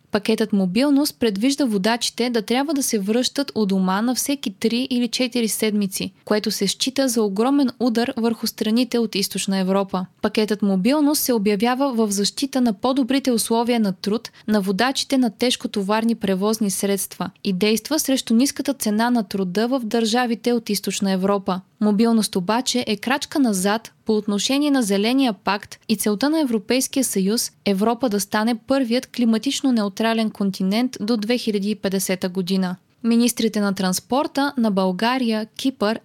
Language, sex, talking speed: Bulgarian, female, 145 wpm